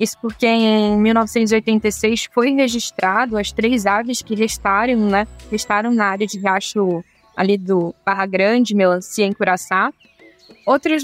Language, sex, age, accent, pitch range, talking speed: Portuguese, female, 10-29, Brazilian, 225-295 Hz, 135 wpm